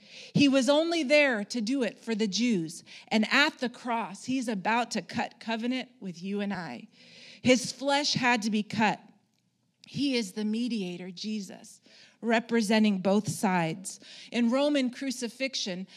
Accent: American